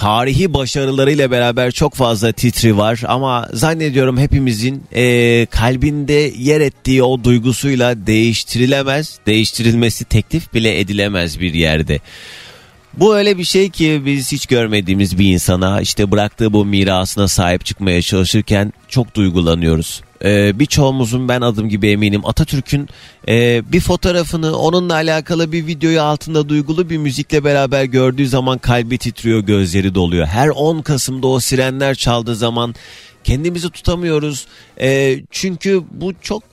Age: 30-49